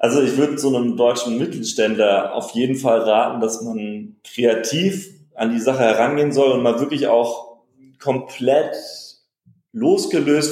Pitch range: 120-165 Hz